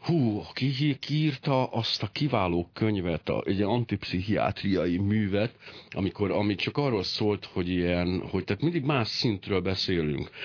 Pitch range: 90-125 Hz